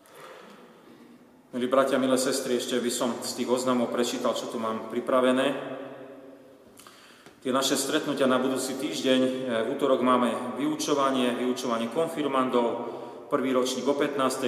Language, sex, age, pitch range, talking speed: Slovak, male, 40-59, 125-140 Hz, 130 wpm